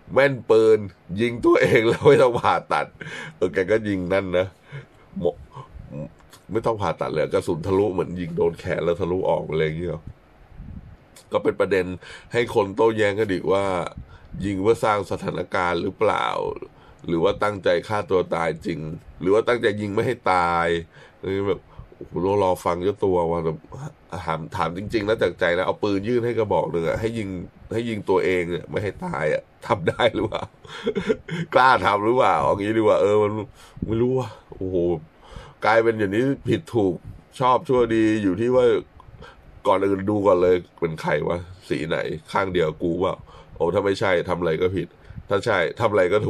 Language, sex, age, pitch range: Thai, male, 20-39, 90-120 Hz